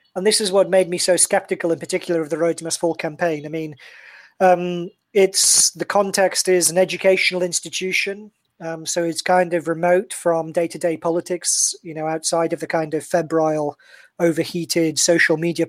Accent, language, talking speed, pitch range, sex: British, English, 175 wpm, 160-180 Hz, male